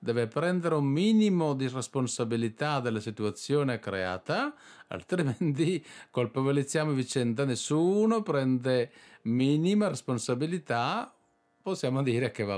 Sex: male